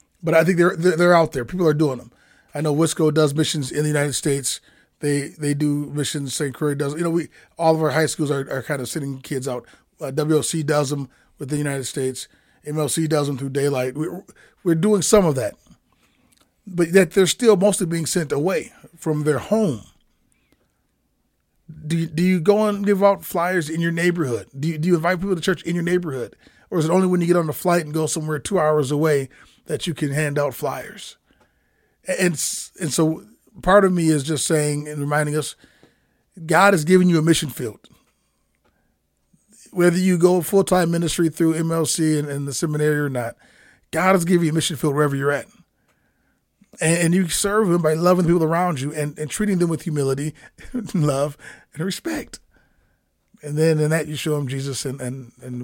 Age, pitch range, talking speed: 30-49, 145-175 Hz, 205 wpm